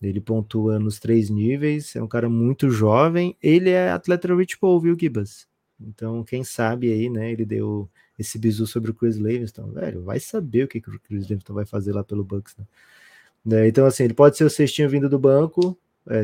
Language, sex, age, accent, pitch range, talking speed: Portuguese, male, 20-39, Brazilian, 110-135 Hz, 205 wpm